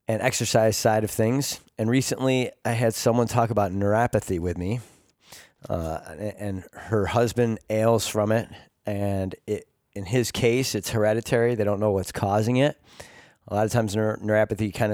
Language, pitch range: English, 105-120 Hz